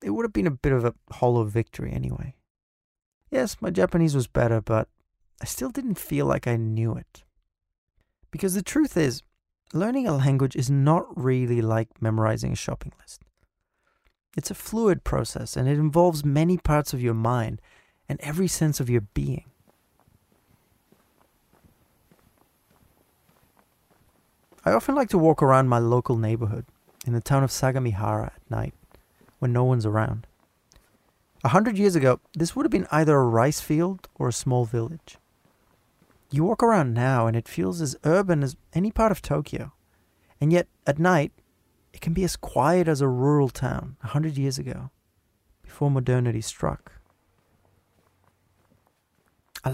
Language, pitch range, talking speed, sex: English, 110-165 Hz, 155 wpm, male